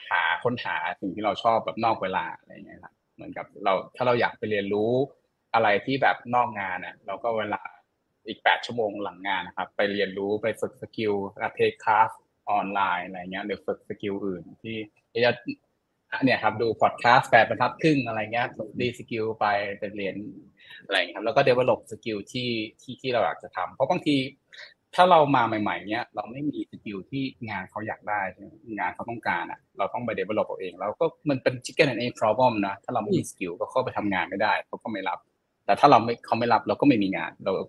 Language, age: Thai, 20-39